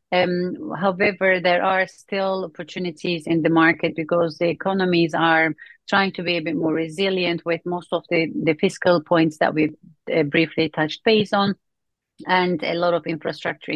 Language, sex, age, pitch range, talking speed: English, female, 30-49, 160-185 Hz, 165 wpm